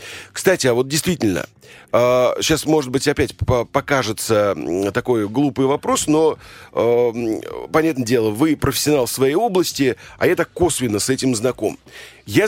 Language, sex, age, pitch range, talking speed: Russian, male, 40-59, 120-150 Hz, 130 wpm